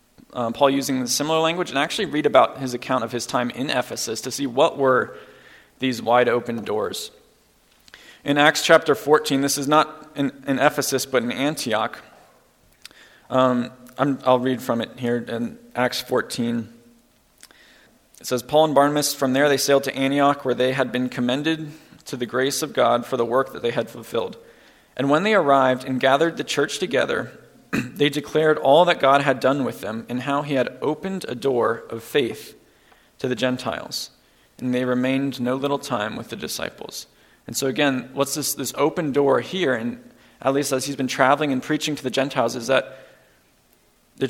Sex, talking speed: male, 185 wpm